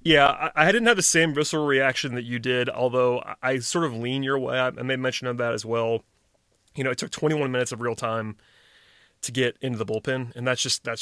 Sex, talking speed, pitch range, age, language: male, 235 wpm, 120-135 Hz, 30-49, English